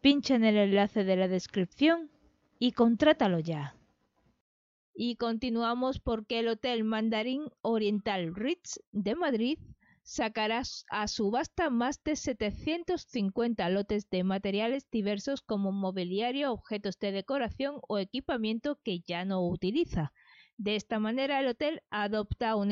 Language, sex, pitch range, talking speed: Spanish, female, 200-270 Hz, 125 wpm